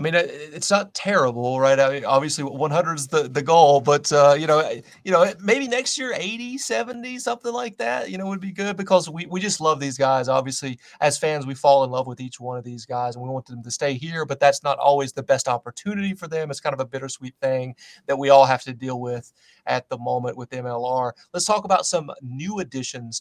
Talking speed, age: 245 wpm, 30-49